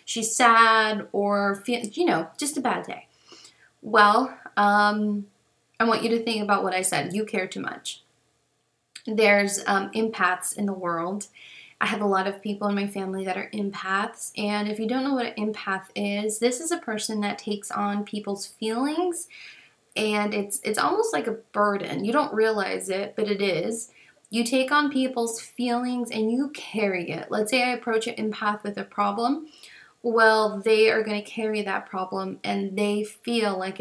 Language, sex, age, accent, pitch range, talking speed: English, female, 20-39, American, 200-230 Hz, 185 wpm